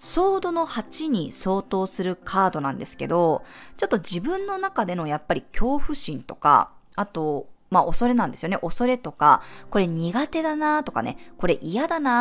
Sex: female